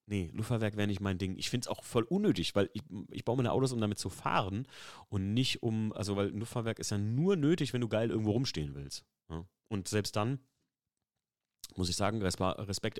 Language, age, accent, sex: German, 30-49, German, male